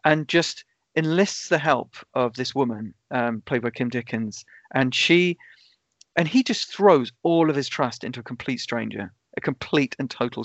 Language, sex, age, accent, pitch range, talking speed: English, male, 40-59, British, 120-175 Hz, 180 wpm